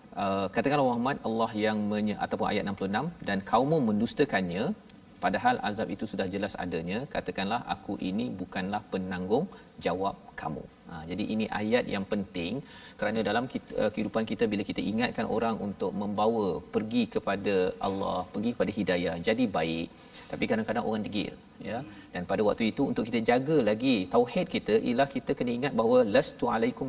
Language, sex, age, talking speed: Malayalam, male, 40-59, 165 wpm